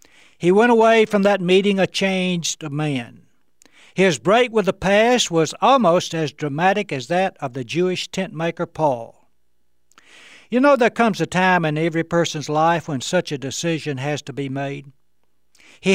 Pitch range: 145-195 Hz